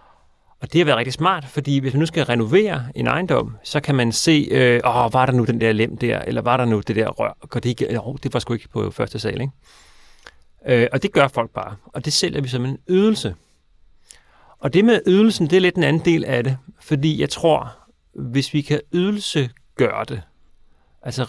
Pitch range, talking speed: 110-145 Hz, 220 wpm